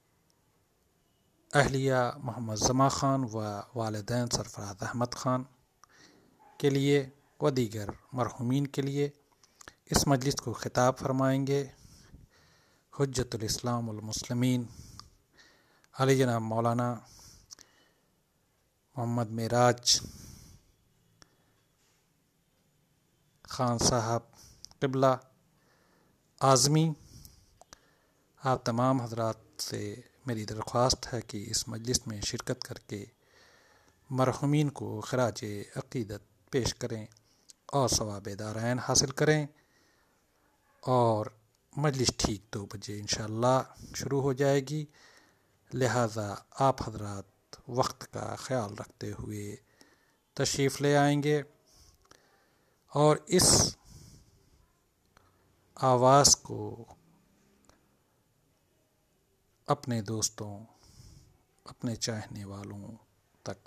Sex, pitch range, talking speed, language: male, 110-135 Hz, 80 wpm, Hindi